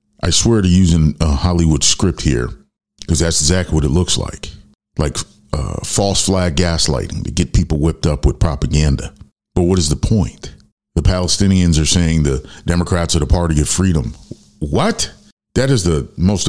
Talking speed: 175 wpm